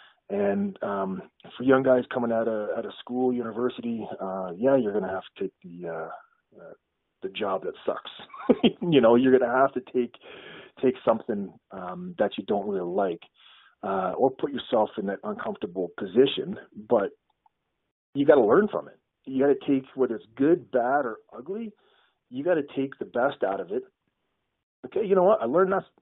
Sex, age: male, 30-49